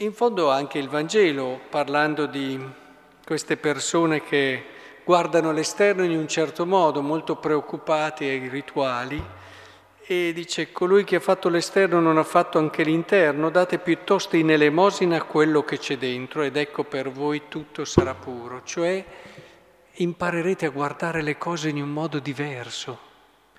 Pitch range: 130-165 Hz